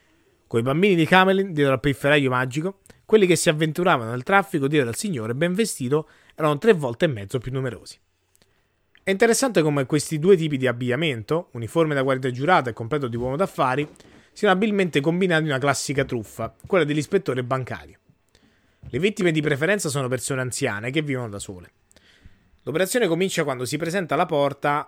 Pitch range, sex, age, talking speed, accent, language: 115-160 Hz, male, 20-39, 175 wpm, native, Italian